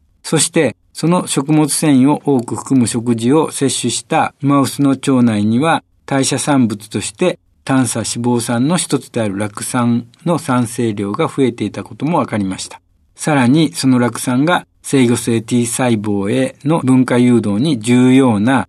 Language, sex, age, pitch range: Japanese, male, 60-79, 115-145 Hz